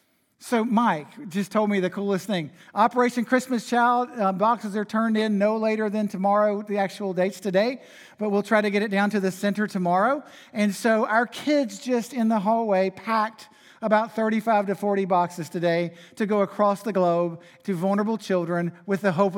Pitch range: 190-230 Hz